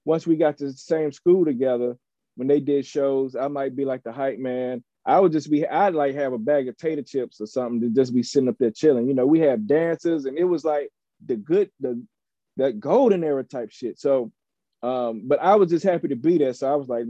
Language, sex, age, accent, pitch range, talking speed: English, male, 30-49, American, 120-145 Hz, 250 wpm